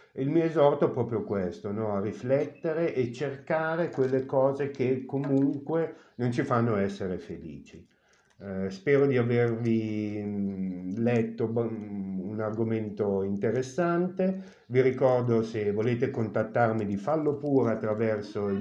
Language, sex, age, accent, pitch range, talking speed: Italian, male, 50-69, native, 110-155 Hz, 125 wpm